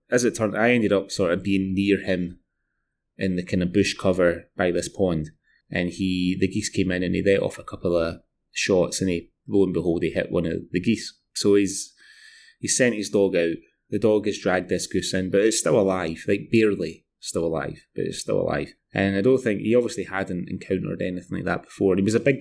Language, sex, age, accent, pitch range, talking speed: English, male, 20-39, British, 95-120 Hz, 235 wpm